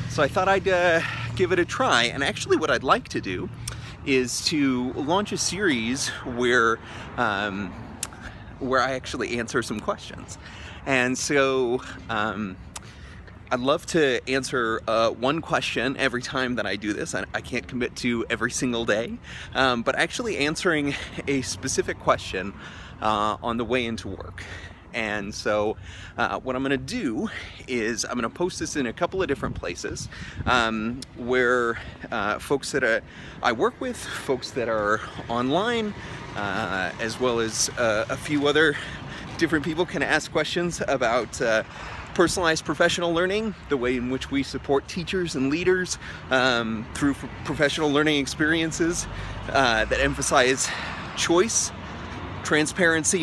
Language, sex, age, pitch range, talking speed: English, male, 30-49, 110-155 Hz, 150 wpm